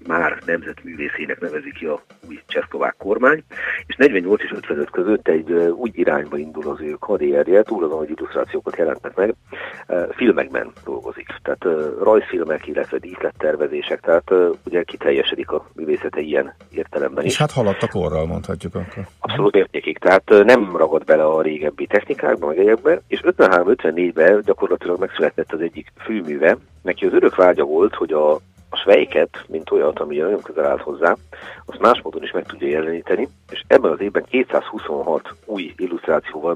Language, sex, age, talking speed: Hungarian, male, 50-69, 150 wpm